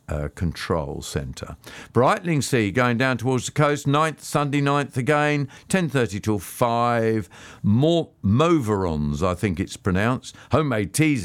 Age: 50-69